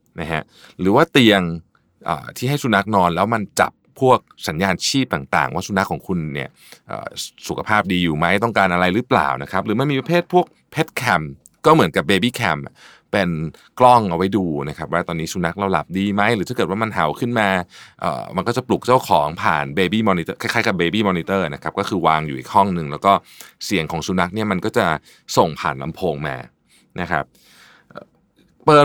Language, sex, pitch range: Thai, male, 85-120 Hz